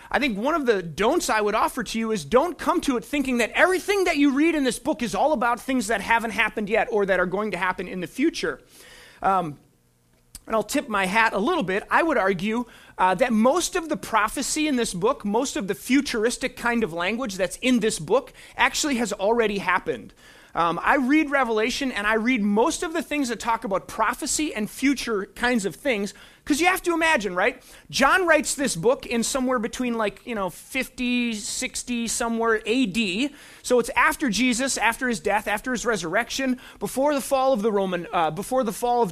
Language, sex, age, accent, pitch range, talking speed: English, male, 30-49, American, 220-290 Hz, 205 wpm